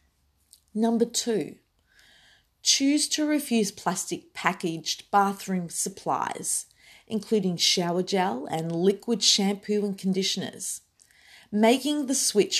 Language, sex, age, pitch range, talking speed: English, female, 30-49, 180-220 Hz, 95 wpm